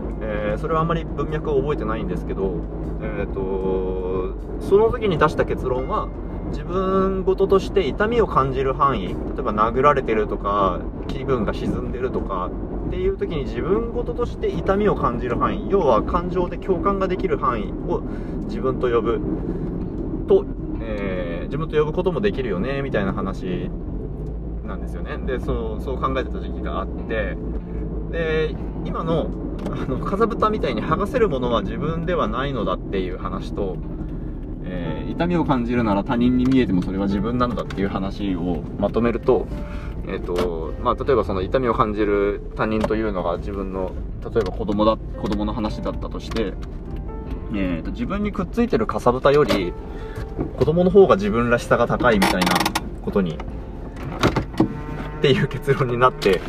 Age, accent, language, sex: 20-39, native, Japanese, male